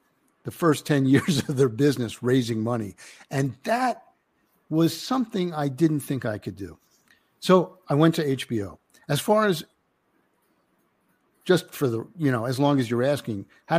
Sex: male